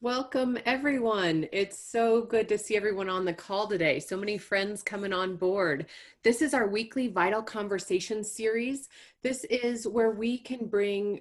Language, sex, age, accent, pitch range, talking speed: English, female, 30-49, American, 180-230 Hz, 165 wpm